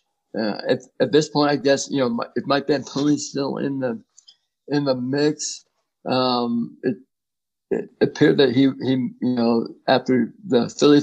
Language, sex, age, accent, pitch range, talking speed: English, male, 60-79, American, 115-135 Hz, 165 wpm